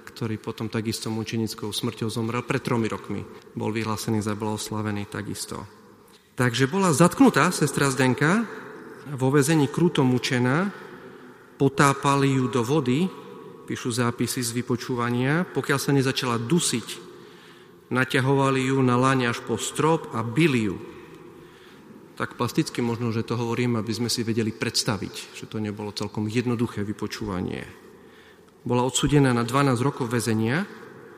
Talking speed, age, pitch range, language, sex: 135 wpm, 40-59, 115-140 Hz, Slovak, male